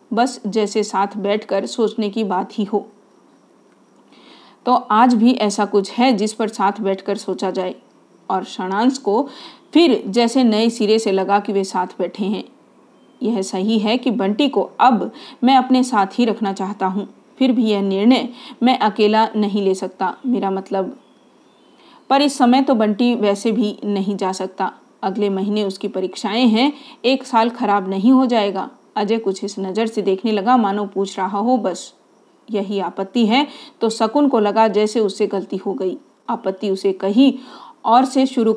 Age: 40-59